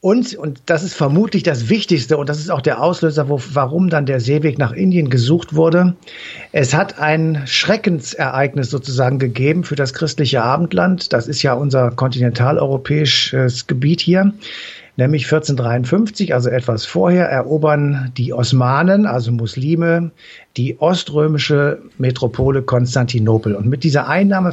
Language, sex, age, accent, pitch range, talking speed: German, male, 60-79, German, 135-170 Hz, 140 wpm